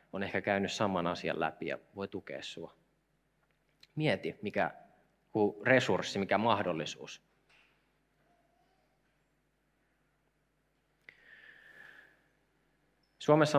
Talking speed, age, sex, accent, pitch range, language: 70 wpm, 30-49, male, native, 100-130 Hz, Finnish